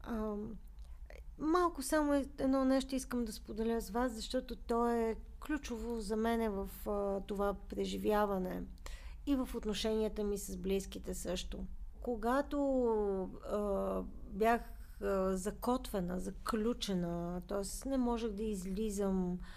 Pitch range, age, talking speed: 205-275 Hz, 40-59, 115 wpm